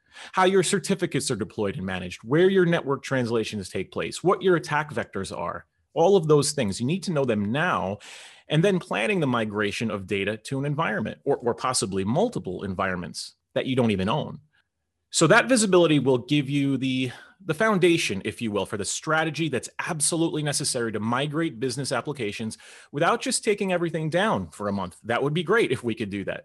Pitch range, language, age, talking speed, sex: 105-165 Hz, English, 30-49, 195 wpm, male